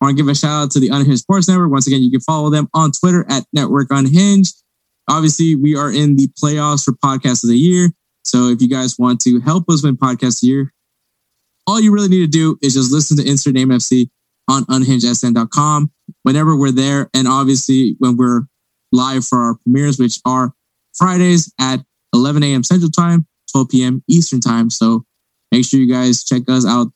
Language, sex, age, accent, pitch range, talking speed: English, male, 20-39, American, 125-150 Hz, 205 wpm